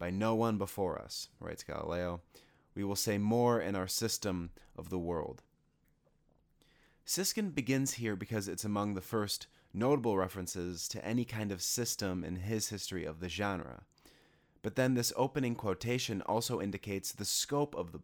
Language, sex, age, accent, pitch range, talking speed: English, male, 30-49, American, 95-115 Hz, 165 wpm